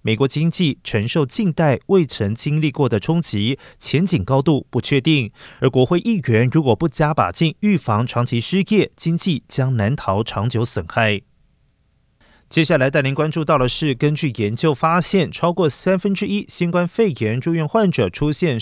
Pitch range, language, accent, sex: 120-175 Hz, Chinese, native, male